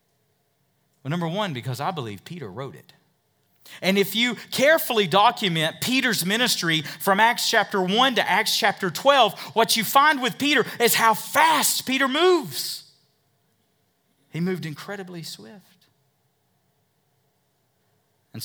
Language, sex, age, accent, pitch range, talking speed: English, male, 40-59, American, 140-215 Hz, 125 wpm